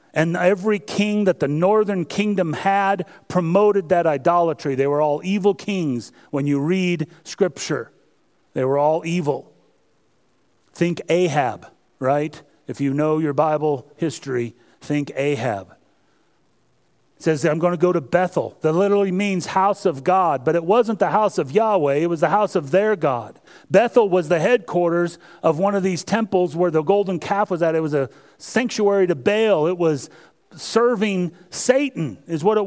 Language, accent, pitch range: English, American, 150-195 Hz